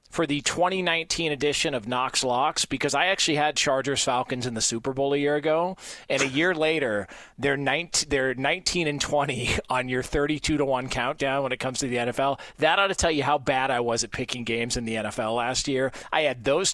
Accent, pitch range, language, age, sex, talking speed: American, 130-175 Hz, English, 40-59, male, 220 wpm